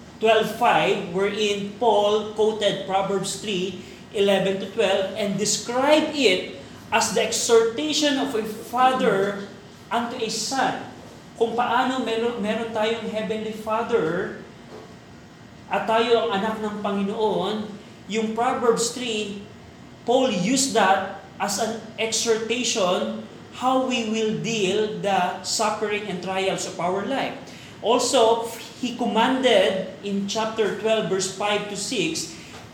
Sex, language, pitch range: male, Filipino, 200-230 Hz